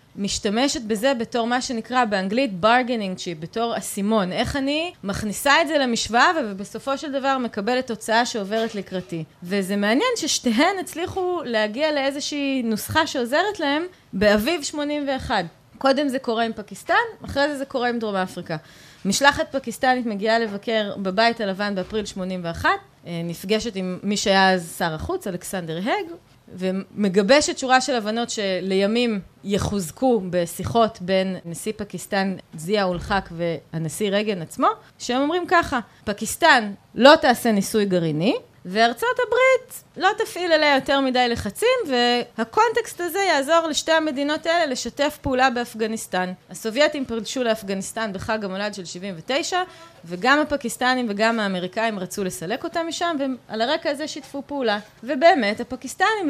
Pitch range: 200-290 Hz